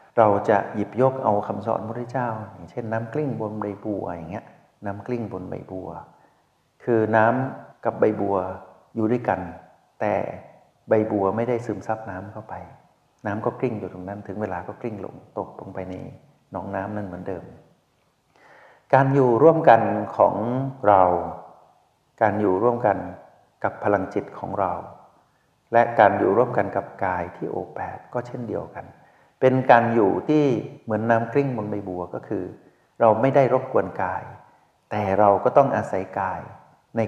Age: 60-79